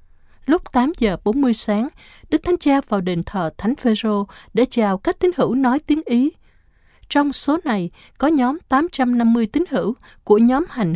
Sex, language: female, Vietnamese